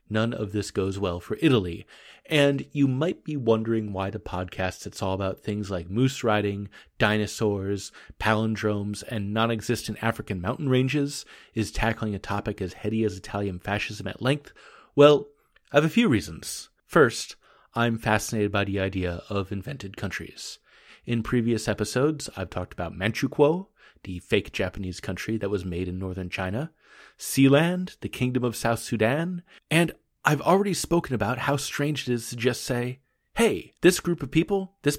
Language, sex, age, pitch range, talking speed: English, male, 30-49, 100-145 Hz, 165 wpm